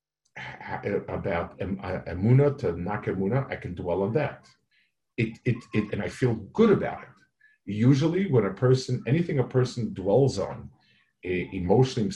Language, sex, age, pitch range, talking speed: English, male, 50-69, 105-130 Hz, 140 wpm